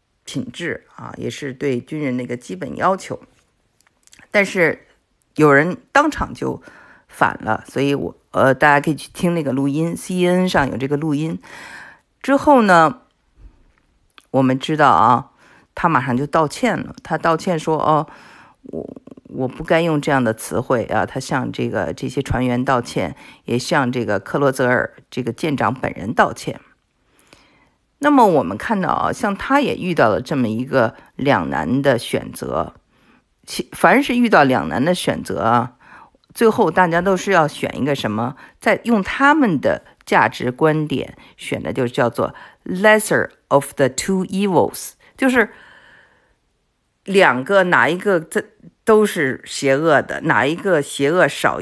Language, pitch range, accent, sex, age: Chinese, 135-190 Hz, native, female, 50-69